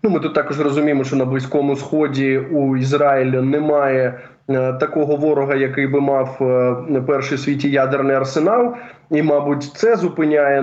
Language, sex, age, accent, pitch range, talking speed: Ukrainian, male, 20-39, native, 135-170 Hz, 160 wpm